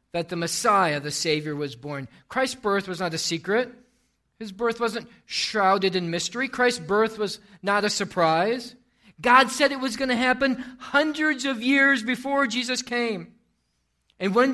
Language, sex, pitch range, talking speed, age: English, male, 170-245 Hz, 165 wpm, 40-59